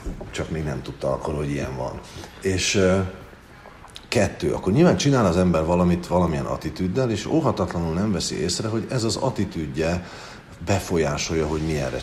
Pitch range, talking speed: 75-95 Hz, 150 wpm